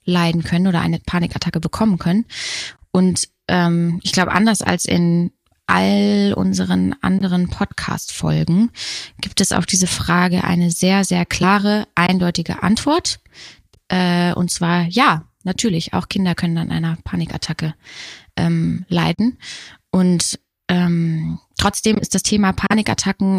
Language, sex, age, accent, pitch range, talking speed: German, female, 20-39, German, 170-195 Hz, 125 wpm